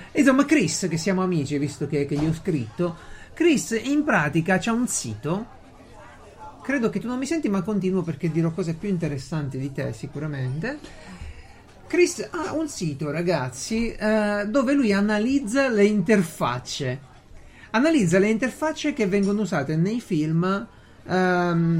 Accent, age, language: native, 40-59, Italian